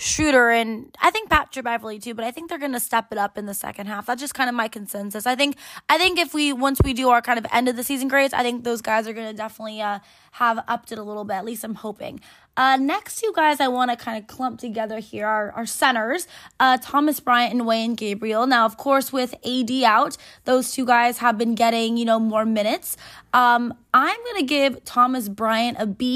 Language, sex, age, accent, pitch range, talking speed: English, female, 20-39, American, 225-275 Hz, 240 wpm